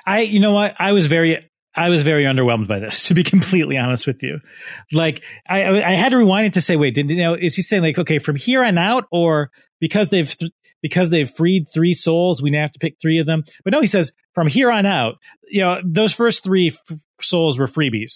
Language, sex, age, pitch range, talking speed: English, male, 30-49, 130-175 Hz, 245 wpm